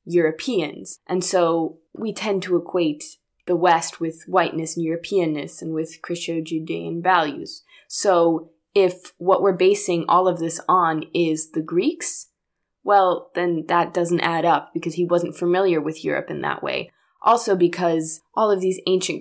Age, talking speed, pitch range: 20-39, 155 wpm, 165-200 Hz